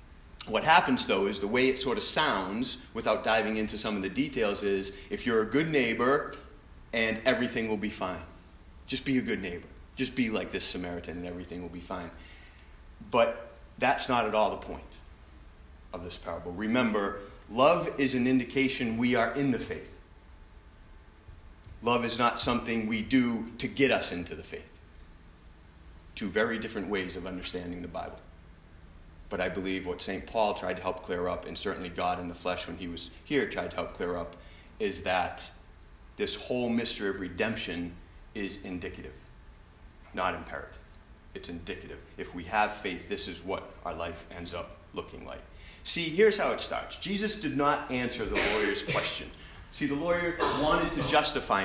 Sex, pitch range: male, 85-115 Hz